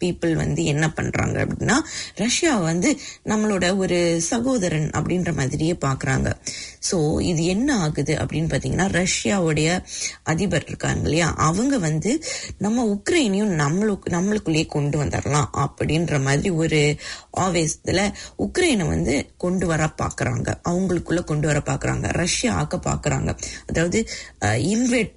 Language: English